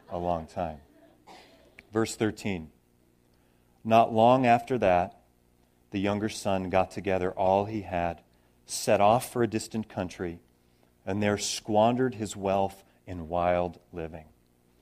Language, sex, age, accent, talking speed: German, male, 40-59, American, 125 wpm